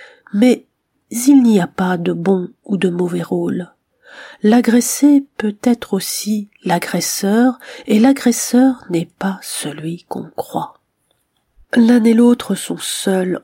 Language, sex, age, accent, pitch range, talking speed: French, female, 40-59, French, 180-220 Hz, 125 wpm